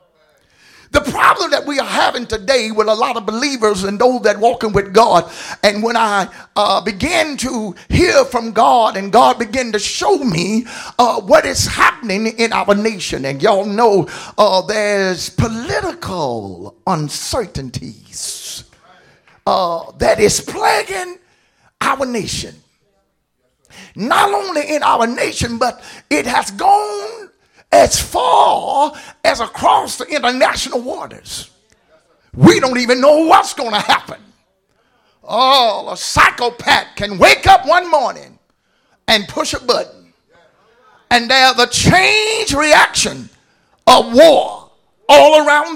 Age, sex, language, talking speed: 50-69, male, English, 130 wpm